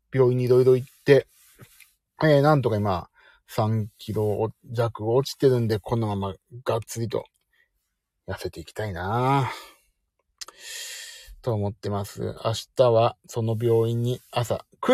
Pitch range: 100-140 Hz